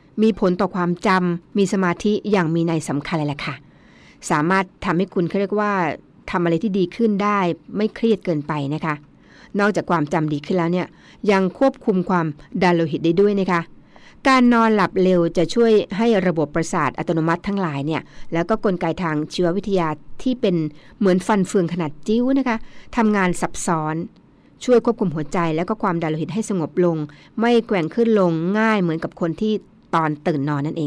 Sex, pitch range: female, 165-205 Hz